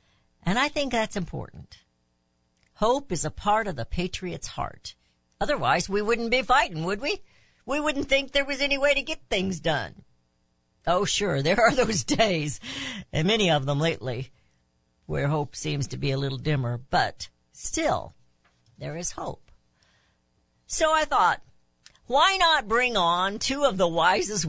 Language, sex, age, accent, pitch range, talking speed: English, female, 60-79, American, 145-235 Hz, 160 wpm